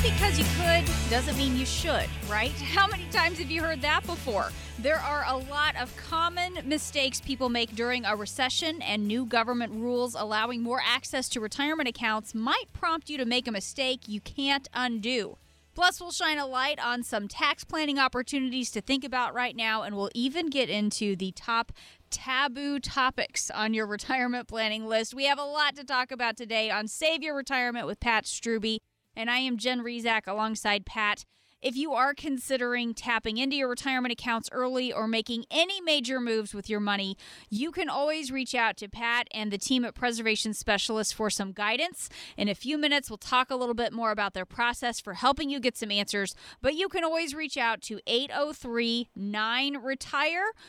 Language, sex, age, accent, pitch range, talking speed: English, female, 30-49, American, 220-280 Hz, 190 wpm